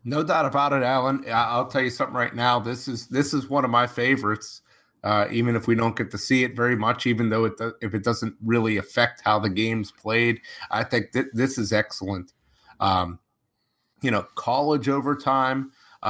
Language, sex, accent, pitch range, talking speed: English, male, American, 110-130 Hz, 200 wpm